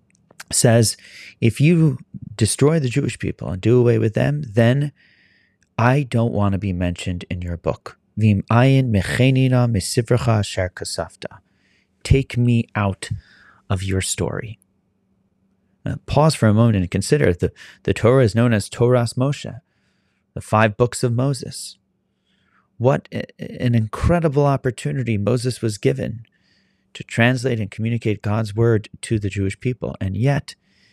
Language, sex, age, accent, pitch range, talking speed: English, male, 30-49, American, 95-125 Hz, 130 wpm